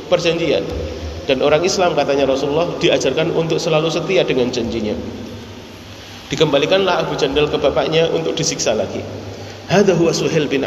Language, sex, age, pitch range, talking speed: Indonesian, male, 30-49, 155-205 Hz, 130 wpm